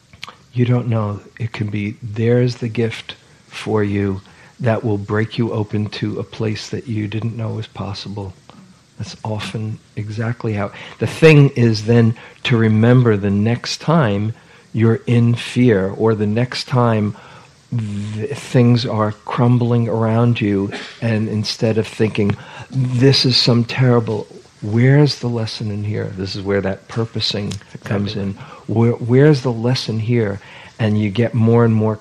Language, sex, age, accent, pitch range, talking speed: English, male, 50-69, American, 105-125 Hz, 155 wpm